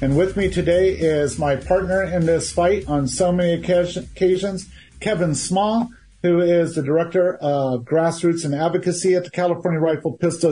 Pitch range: 150-180 Hz